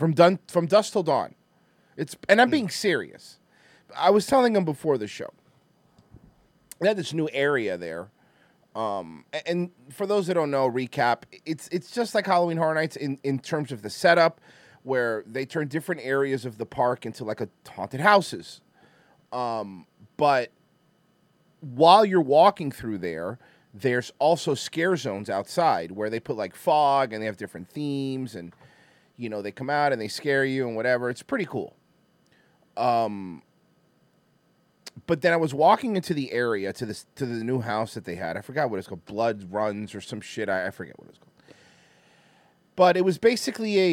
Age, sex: 30-49, male